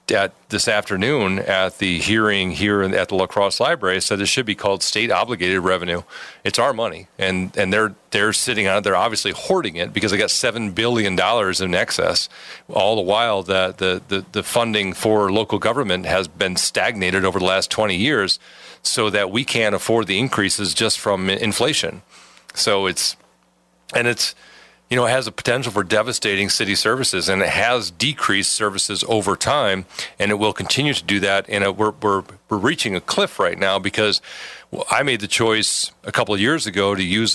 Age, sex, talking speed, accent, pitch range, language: 40-59, male, 195 wpm, American, 95-110 Hz, English